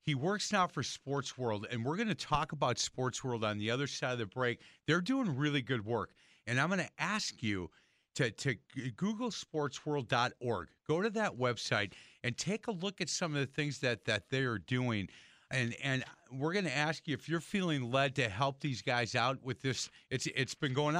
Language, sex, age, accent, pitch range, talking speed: English, male, 40-59, American, 120-155 Hz, 215 wpm